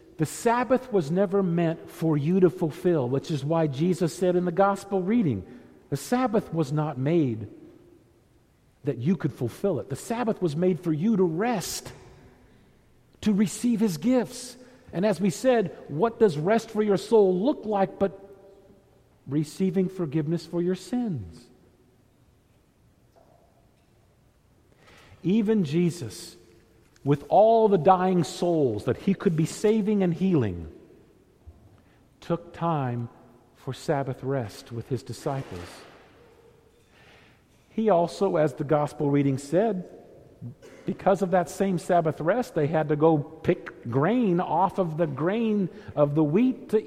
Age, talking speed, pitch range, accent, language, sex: 50-69, 135 wpm, 150-200 Hz, American, English, male